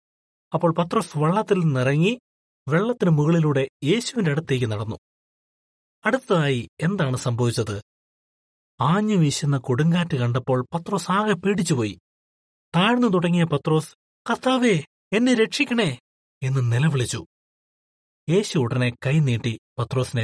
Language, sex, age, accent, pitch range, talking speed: Malayalam, male, 30-49, native, 120-180 Hz, 90 wpm